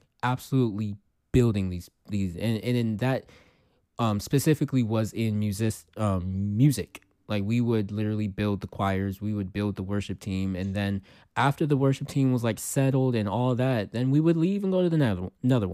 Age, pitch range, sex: 20-39, 95-120 Hz, male